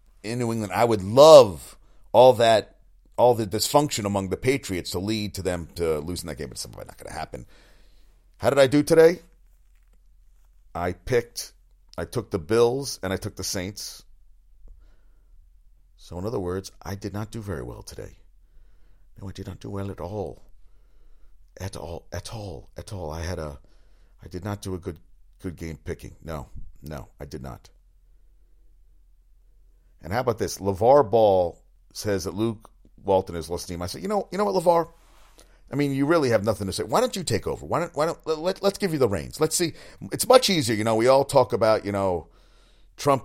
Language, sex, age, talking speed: English, male, 40-59, 200 wpm